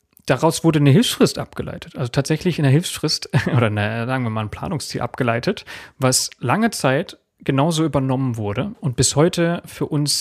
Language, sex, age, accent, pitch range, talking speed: German, male, 30-49, German, 115-140 Hz, 170 wpm